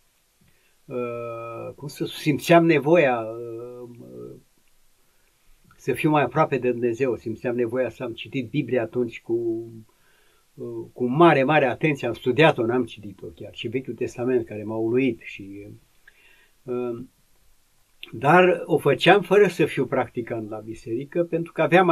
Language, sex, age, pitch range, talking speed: Romanian, male, 60-79, 110-145 Hz, 135 wpm